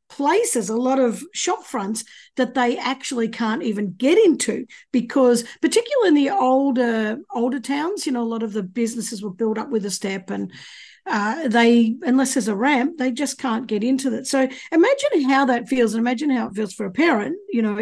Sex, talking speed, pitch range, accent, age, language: female, 205 wpm, 220-270 Hz, Australian, 50-69, English